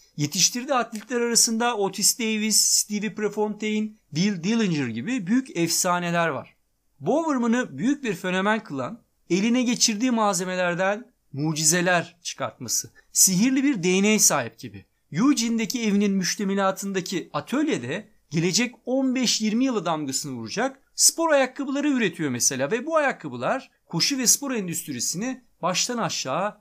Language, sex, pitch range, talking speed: Turkish, male, 165-245 Hz, 115 wpm